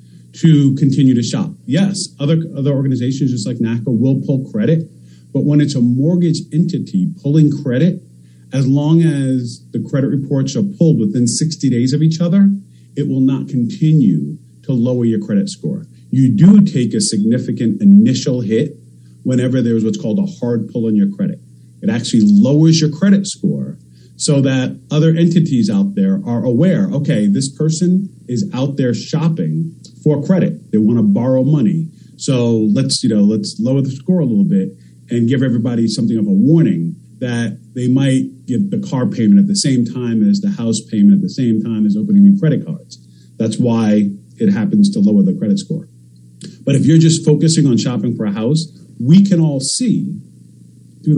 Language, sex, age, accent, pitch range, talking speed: English, male, 40-59, American, 115-170 Hz, 185 wpm